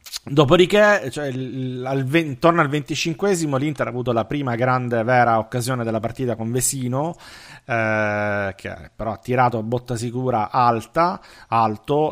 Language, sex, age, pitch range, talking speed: Italian, male, 40-59, 115-135 Hz, 135 wpm